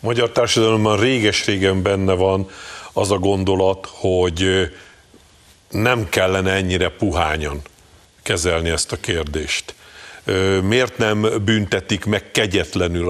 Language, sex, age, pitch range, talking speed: Hungarian, male, 50-69, 95-115 Hz, 100 wpm